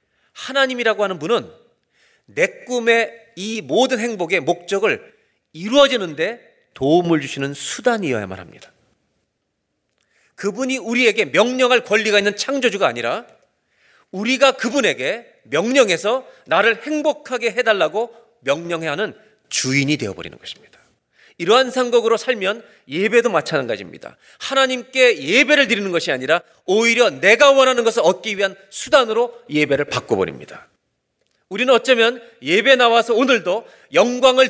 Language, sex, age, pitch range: Korean, male, 40-59, 165-255 Hz